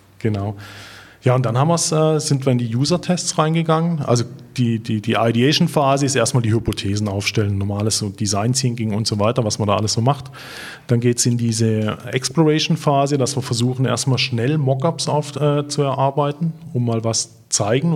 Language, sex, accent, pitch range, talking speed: German, male, German, 115-140 Hz, 175 wpm